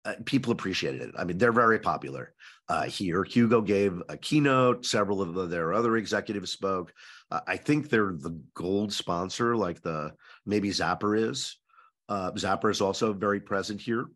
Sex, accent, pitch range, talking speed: male, American, 90-115 Hz, 175 wpm